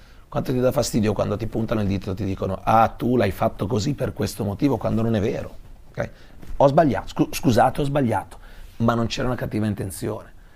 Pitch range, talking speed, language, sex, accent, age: 100-115 Hz, 205 wpm, Italian, male, native, 40-59